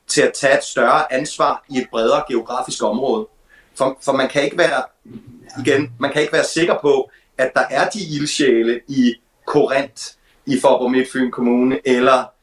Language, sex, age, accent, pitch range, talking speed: Danish, male, 30-49, native, 120-145 Hz, 175 wpm